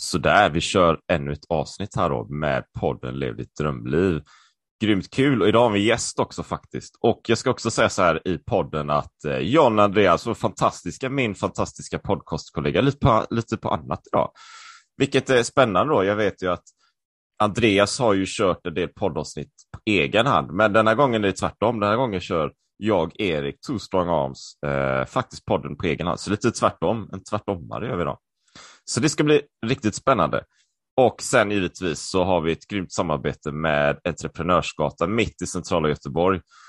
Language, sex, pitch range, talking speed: Swedish, male, 85-115 Hz, 185 wpm